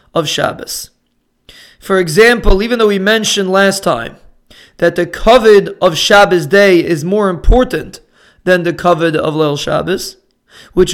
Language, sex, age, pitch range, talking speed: English, male, 30-49, 180-215 Hz, 145 wpm